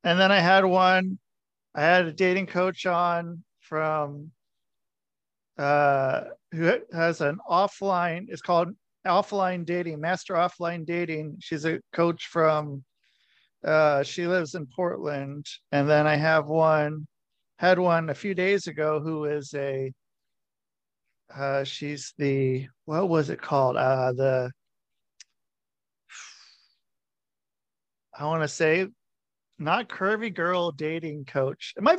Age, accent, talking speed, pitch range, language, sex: 40-59, American, 125 wpm, 150-185 Hz, English, male